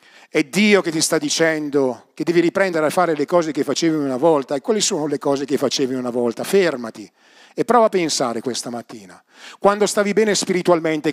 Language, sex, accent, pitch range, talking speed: Italian, male, native, 190-275 Hz, 200 wpm